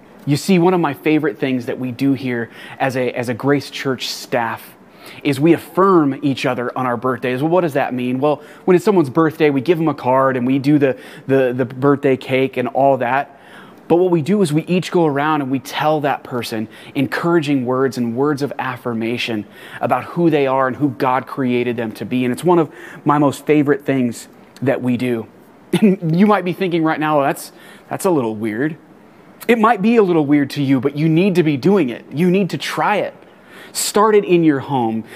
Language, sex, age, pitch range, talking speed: English, male, 30-49, 130-165 Hz, 225 wpm